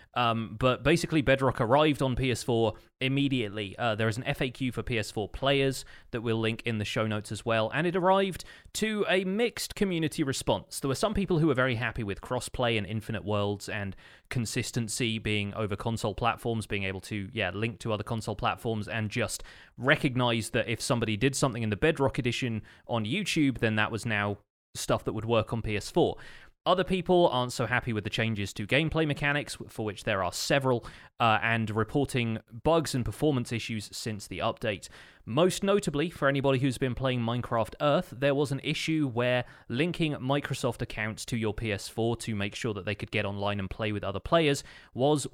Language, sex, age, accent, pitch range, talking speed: English, male, 20-39, British, 110-135 Hz, 195 wpm